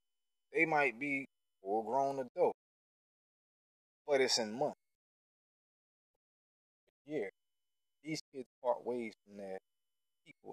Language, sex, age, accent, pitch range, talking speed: English, male, 20-39, American, 100-160 Hz, 105 wpm